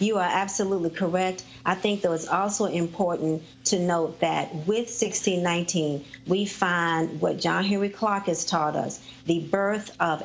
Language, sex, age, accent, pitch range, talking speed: English, female, 50-69, American, 160-200 Hz, 160 wpm